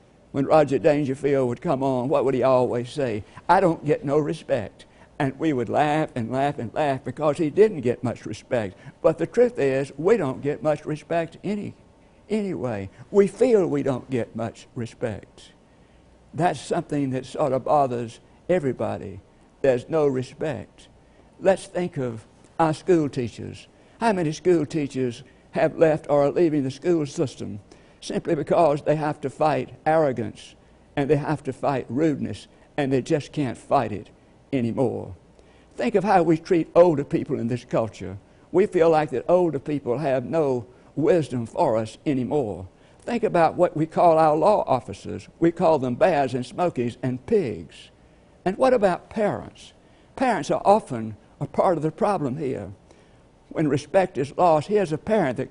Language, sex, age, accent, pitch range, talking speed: English, male, 60-79, American, 125-160 Hz, 170 wpm